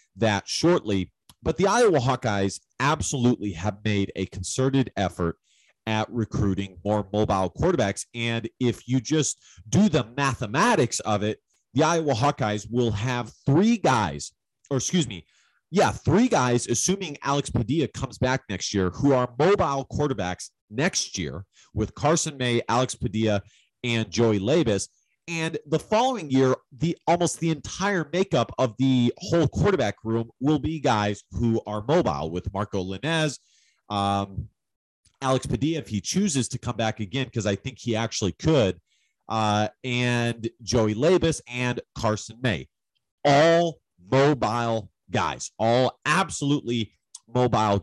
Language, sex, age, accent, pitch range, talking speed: English, male, 30-49, American, 105-140 Hz, 140 wpm